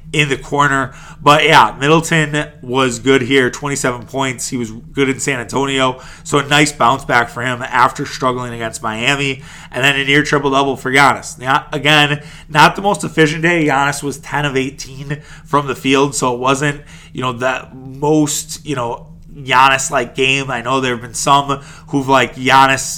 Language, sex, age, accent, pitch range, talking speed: English, male, 30-49, American, 135-160 Hz, 190 wpm